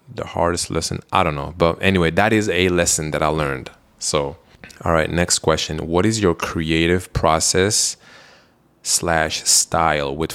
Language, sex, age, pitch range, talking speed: English, male, 20-39, 80-95 Hz, 160 wpm